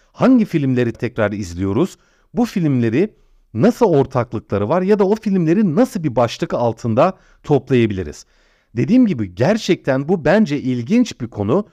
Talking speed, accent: 135 wpm, native